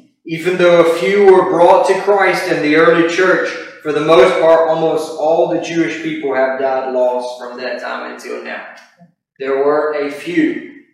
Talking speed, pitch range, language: 180 wpm, 140-205 Hz, English